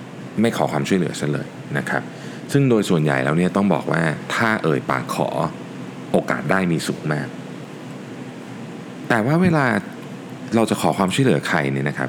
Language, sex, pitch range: Thai, male, 70-115 Hz